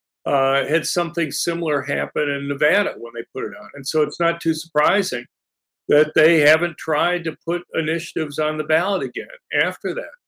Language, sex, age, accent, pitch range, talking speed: English, male, 50-69, American, 140-160 Hz, 180 wpm